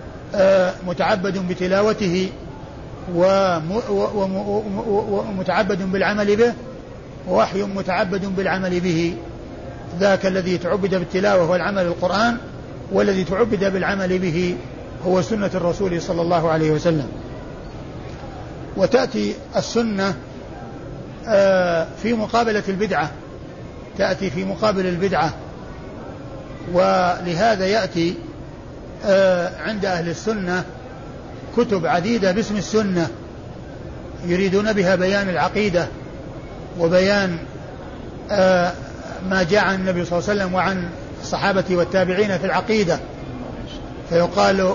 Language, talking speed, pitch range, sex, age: Arabic, 85 wpm, 175-200 Hz, male, 50-69